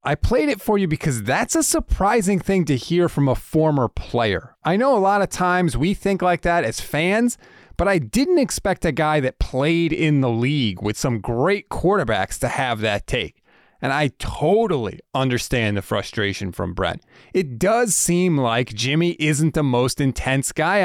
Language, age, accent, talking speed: English, 30-49, American, 185 wpm